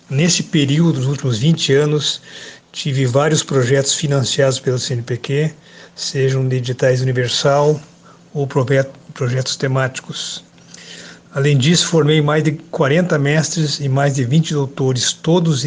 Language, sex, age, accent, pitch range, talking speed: Portuguese, male, 60-79, Brazilian, 135-160 Hz, 120 wpm